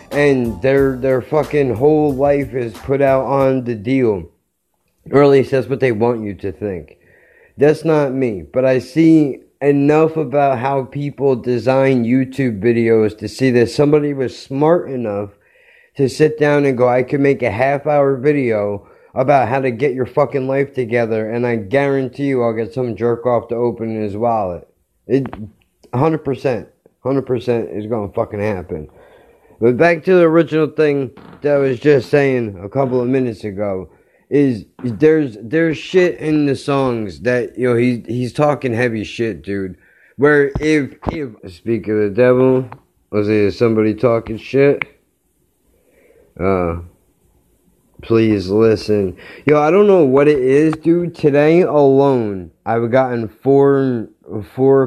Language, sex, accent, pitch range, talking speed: English, male, American, 110-140 Hz, 155 wpm